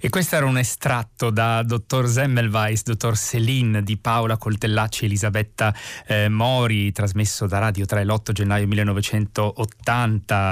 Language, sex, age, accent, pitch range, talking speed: Italian, male, 30-49, native, 100-115 Hz, 135 wpm